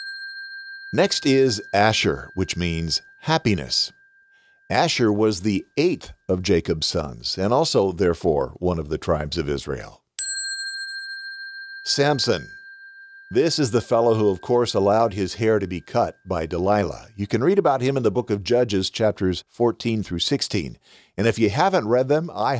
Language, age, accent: English, 50-69, American